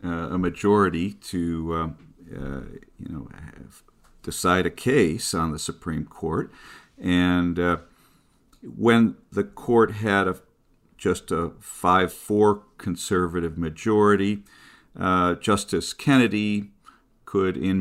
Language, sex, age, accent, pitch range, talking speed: English, male, 50-69, American, 85-100 Hz, 110 wpm